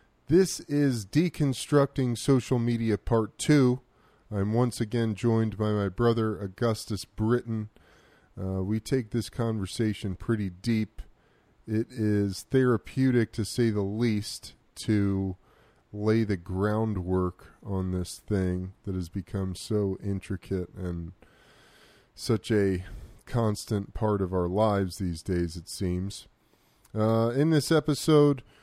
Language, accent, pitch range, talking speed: English, American, 100-120 Hz, 120 wpm